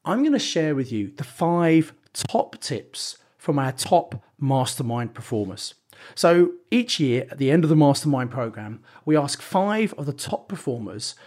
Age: 40-59